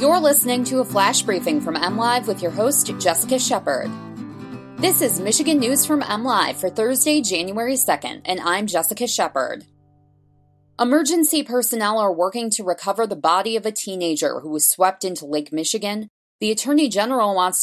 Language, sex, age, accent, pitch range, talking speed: English, female, 20-39, American, 175-235 Hz, 165 wpm